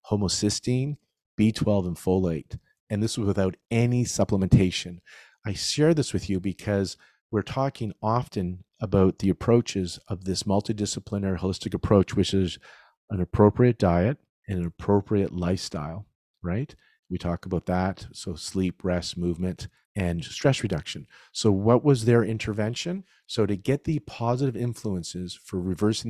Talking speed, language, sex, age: 140 wpm, English, male, 40-59